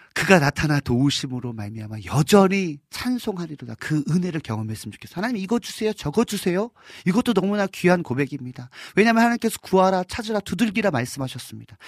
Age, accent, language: 40-59, native, Korean